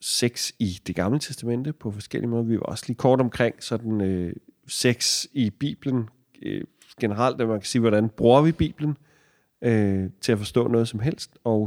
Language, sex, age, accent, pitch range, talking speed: Danish, male, 40-59, native, 110-130 Hz, 185 wpm